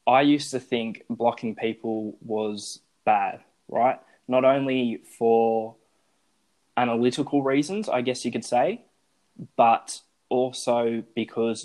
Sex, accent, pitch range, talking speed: male, Australian, 115-125 Hz, 115 wpm